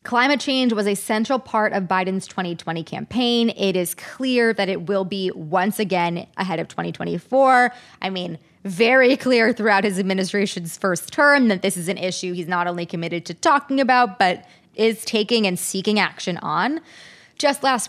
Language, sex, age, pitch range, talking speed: English, female, 20-39, 185-245 Hz, 175 wpm